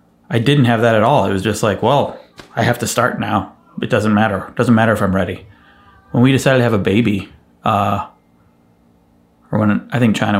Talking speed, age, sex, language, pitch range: 220 wpm, 30-49, male, English, 95-120 Hz